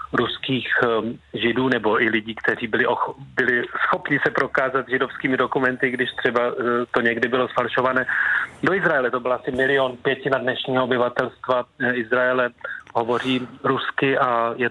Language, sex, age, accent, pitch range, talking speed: Czech, male, 30-49, native, 115-130 Hz, 140 wpm